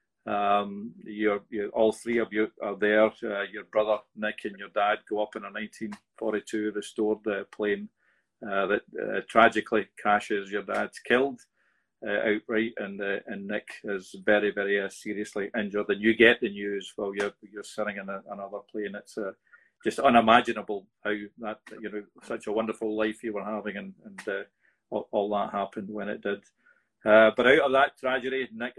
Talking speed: 185 wpm